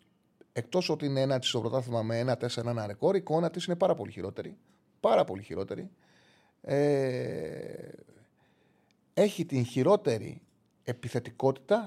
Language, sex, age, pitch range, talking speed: Greek, male, 30-49, 120-180 Hz, 130 wpm